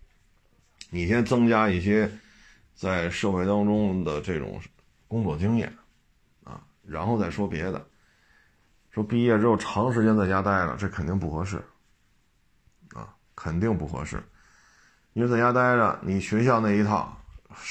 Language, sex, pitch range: Chinese, male, 90-110 Hz